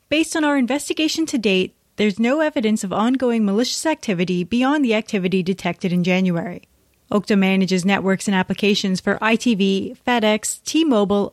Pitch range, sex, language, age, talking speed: 190-240 Hz, female, English, 30-49, 150 wpm